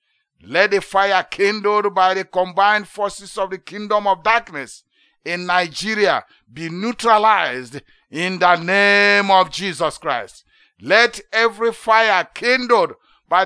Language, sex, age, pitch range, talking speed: English, male, 60-79, 155-200 Hz, 125 wpm